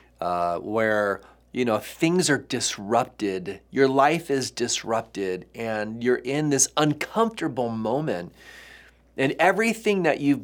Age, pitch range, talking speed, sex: 40-59, 115-145 Hz, 120 wpm, male